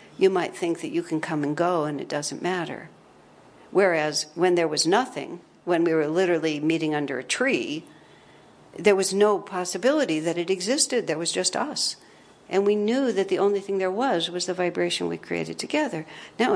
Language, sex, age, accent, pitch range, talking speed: English, female, 60-79, American, 170-250 Hz, 190 wpm